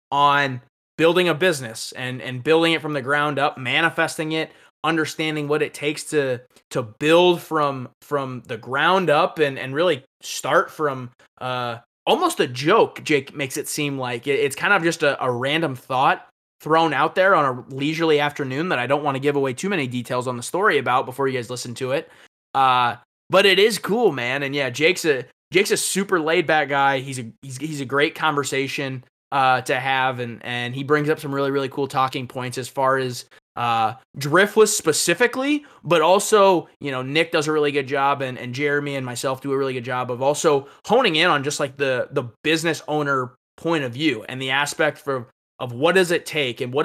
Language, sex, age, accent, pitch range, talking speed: English, male, 20-39, American, 130-160 Hz, 205 wpm